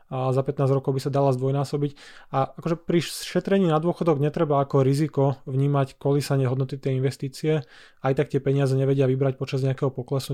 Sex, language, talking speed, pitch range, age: male, Slovak, 180 wpm, 130-145 Hz, 20-39